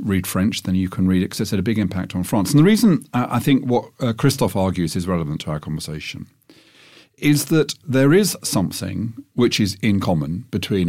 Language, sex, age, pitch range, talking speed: English, male, 40-59, 95-145 Hz, 220 wpm